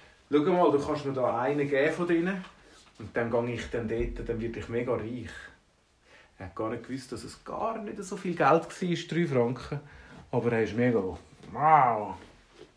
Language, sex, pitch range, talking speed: German, male, 120-180 Hz, 195 wpm